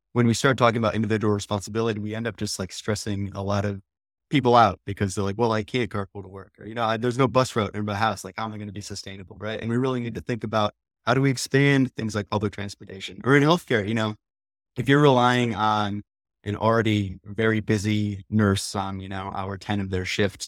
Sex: male